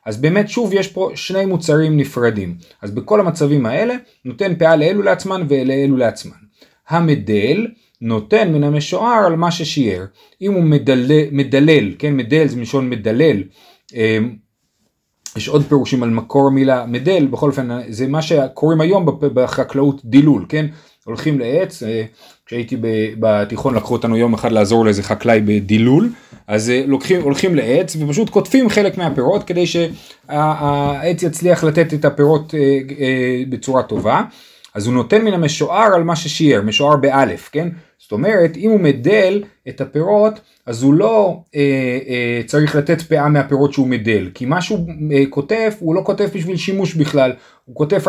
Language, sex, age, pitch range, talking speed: Hebrew, male, 30-49, 130-175 Hz, 150 wpm